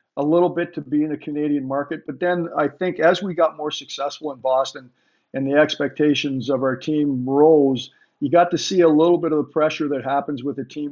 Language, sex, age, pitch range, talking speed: English, male, 50-69, 135-150 Hz, 230 wpm